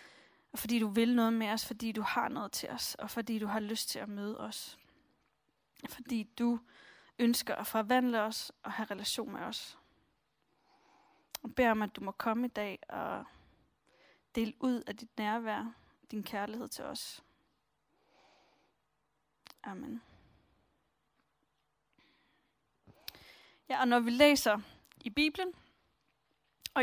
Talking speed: 135 wpm